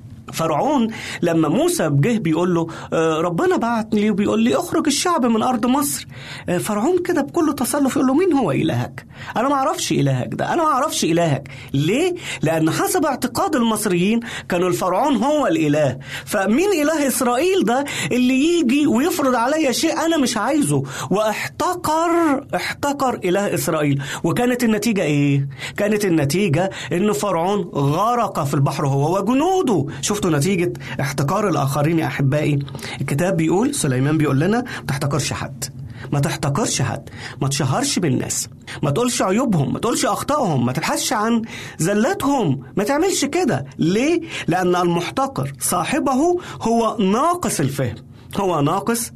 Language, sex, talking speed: Arabic, male, 135 wpm